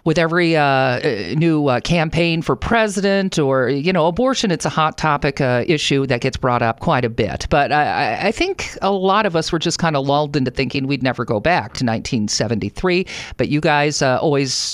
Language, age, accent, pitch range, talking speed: English, 50-69, American, 130-180 Hz, 210 wpm